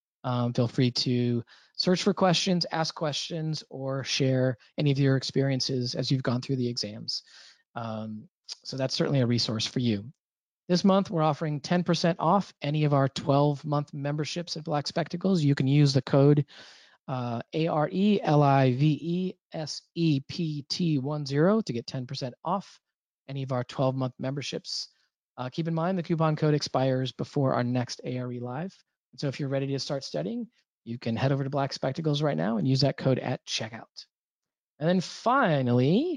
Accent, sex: American, male